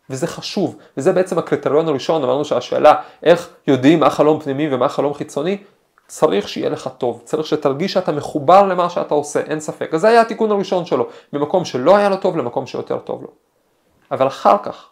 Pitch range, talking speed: 150-210 Hz, 190 wpm